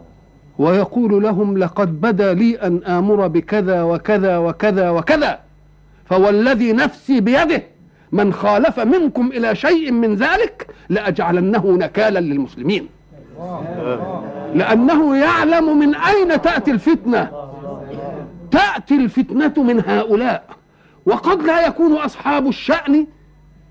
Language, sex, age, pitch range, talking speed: Arabic, male, 50-69, 185-280 Hz, 100 wpm